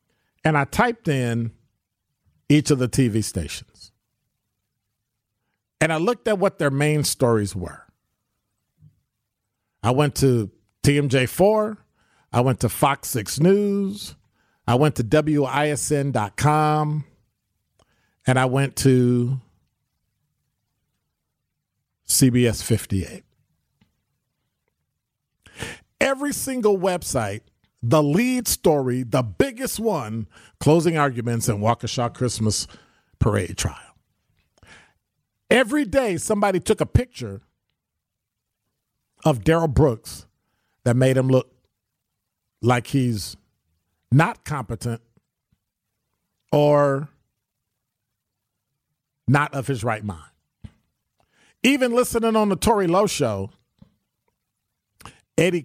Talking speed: 90 wpm